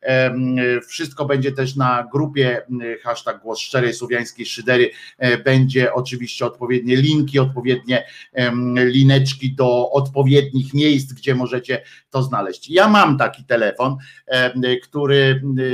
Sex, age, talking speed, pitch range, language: male, 50-69, 105 wpm, 125-145 Hz, Polish